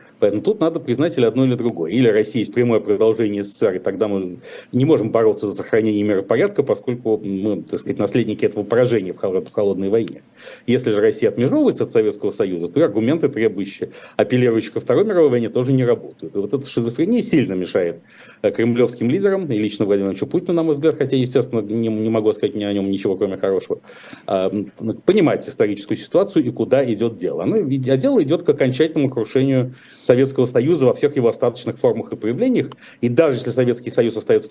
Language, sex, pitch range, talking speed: Russian, male, 105-135 Hz, 185 wpm